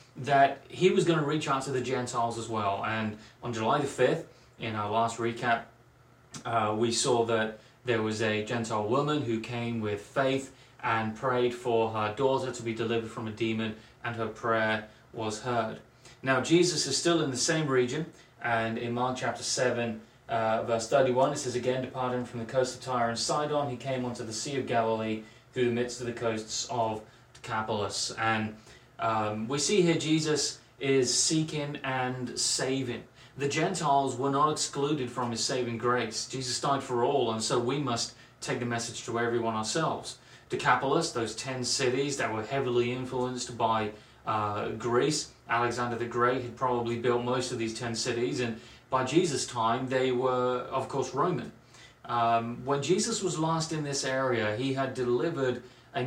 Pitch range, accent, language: 115-130 Hz, British, English